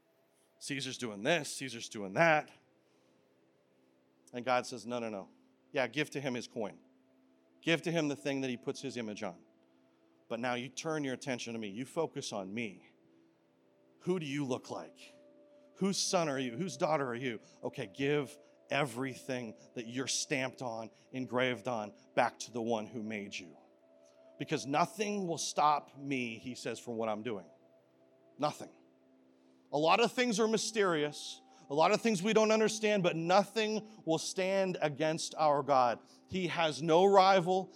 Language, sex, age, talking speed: English, male, 40-59, 170 wpm